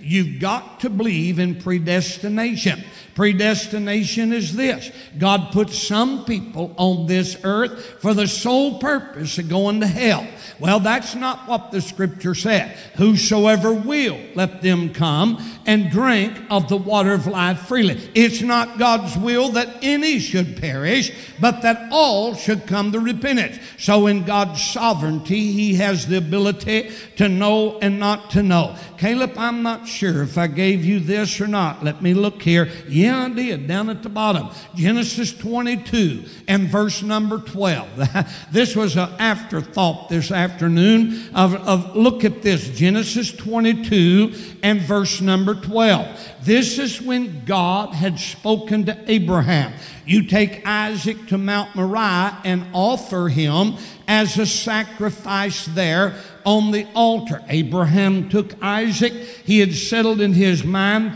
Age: 60-79